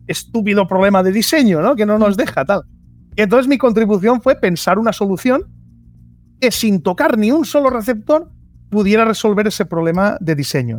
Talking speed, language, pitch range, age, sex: 165 wpm, Spanish, 160-225 Hz, 30-49, male